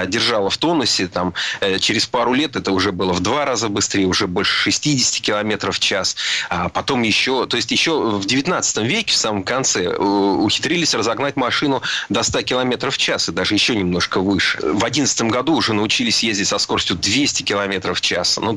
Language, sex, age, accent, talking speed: Russian, male, 30-49, native, 185 wpm